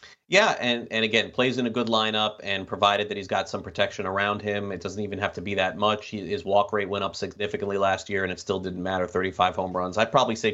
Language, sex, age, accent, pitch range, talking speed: English, male, 30-49, American, 100-125 Hz, 255 wpm